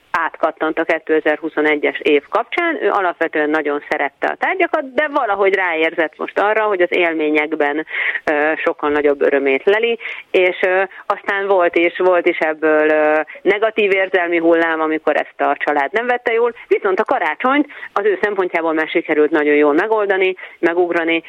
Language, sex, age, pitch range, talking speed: Hungarian, female, 30-49, 150-225 Hz, 155 wpm